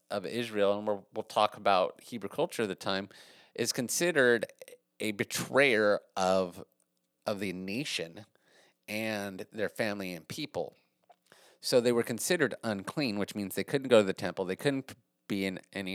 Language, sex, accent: English, male, American